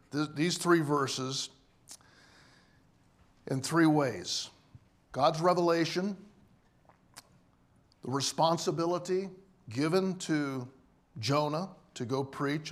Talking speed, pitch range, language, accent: 75 wpm, 130-160 Hz, English, American